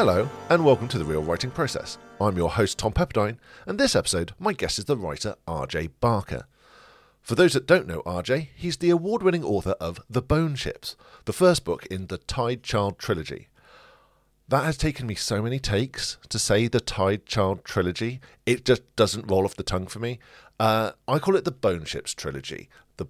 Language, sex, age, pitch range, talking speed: English, male, 50-69, 95-135 Hz, 195 wpm